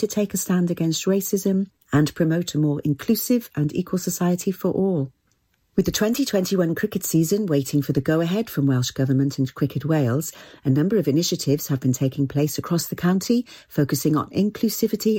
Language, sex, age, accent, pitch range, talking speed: English, female, 40-59, British, 150-195 Hz, 175 wpm